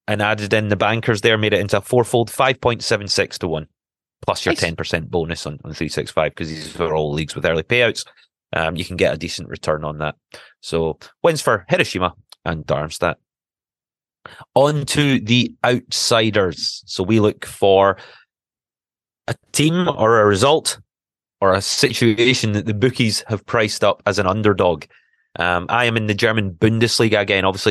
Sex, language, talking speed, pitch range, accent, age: male, English, 170 wpm, 95-115 Hz, British, 30-49